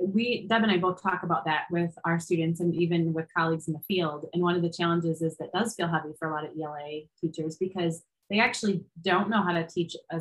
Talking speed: 255 wpm